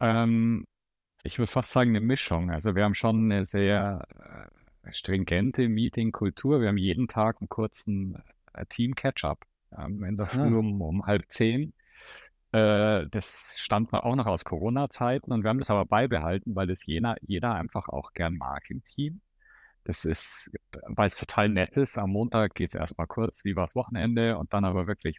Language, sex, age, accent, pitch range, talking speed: German, male, 50-69, German, 90-115 Hz, 170 wpm